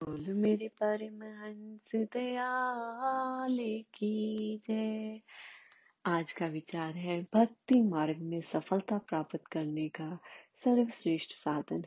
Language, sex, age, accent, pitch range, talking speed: Hindi, female, 30-49, native, 155-210 Hz, 75 wpm